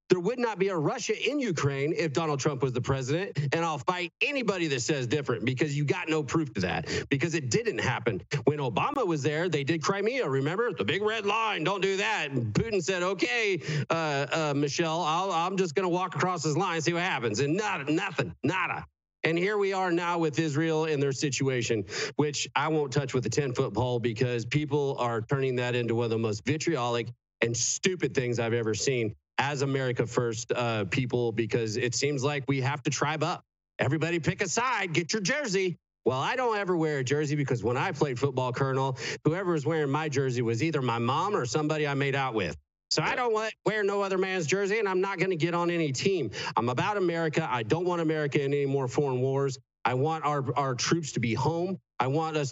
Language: English